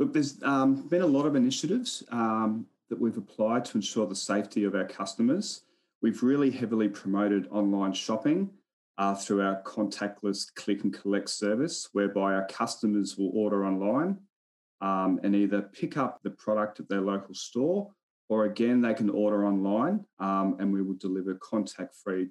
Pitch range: 100-115 Hz